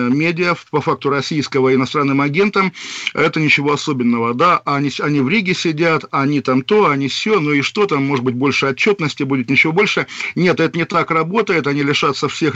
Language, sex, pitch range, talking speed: Russian, male, 135-165 Hz, 190 wpm